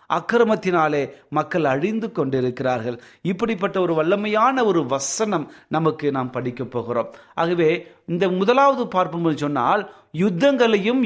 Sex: male